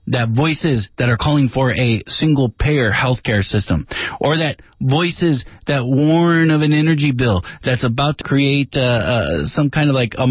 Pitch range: 110-155 Hz